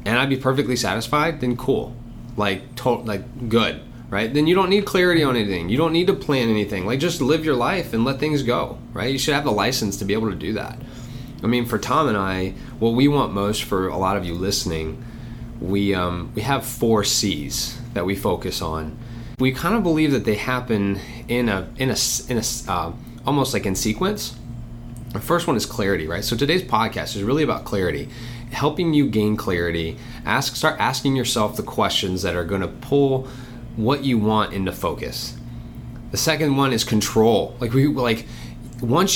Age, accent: 20-39, American